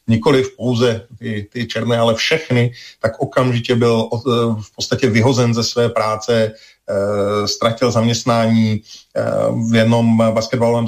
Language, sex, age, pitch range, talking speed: Slovak, male, 40-59, 115-130 Hz, 115 wpm